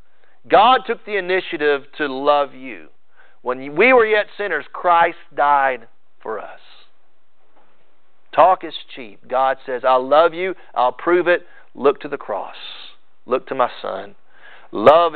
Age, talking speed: 40-59, 145 wpm